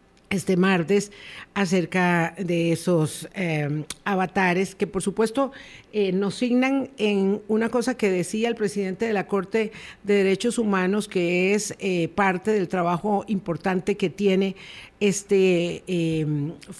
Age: 50-69